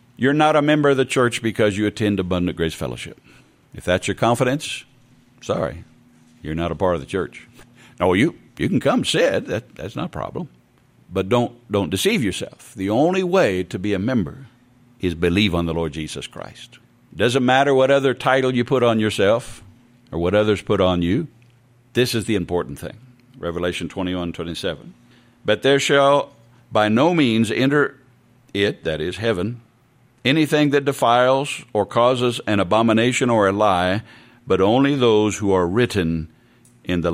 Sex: male